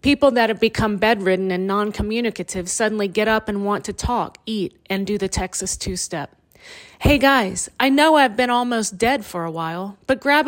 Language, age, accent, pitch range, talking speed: English, 40-59, American, 190-235 Hz, 190 wpm